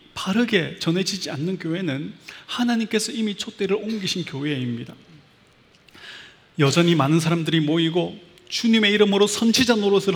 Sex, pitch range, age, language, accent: male, 155-205 Hz, 30-49, Korean, native